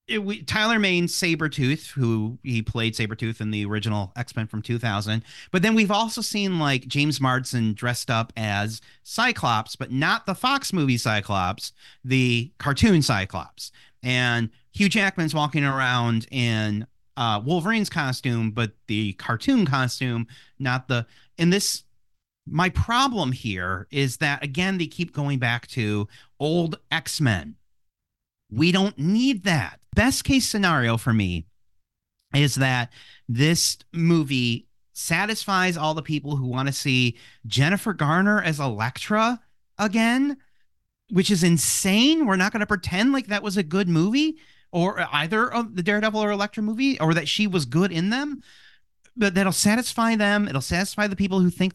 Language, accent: English, American